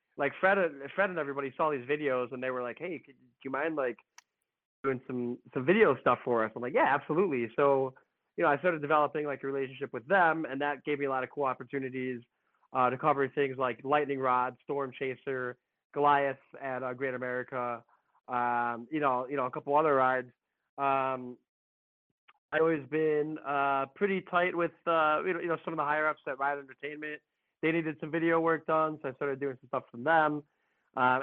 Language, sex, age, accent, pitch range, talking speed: English, male, 20-39, American, 130-155 Hz, 210 wpm